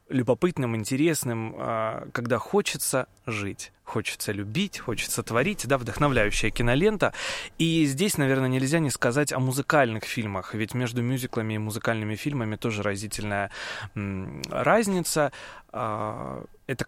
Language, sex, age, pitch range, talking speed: Russian, male, 20-39, 110-135 Hz, 110 wpm